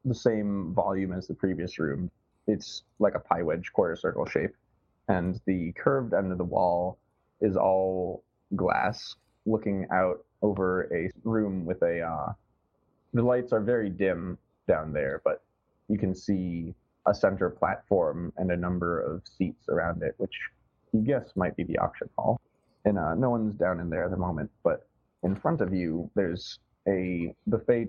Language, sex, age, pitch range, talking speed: English, male, 20-39, 90-115 Hz, 170 wpm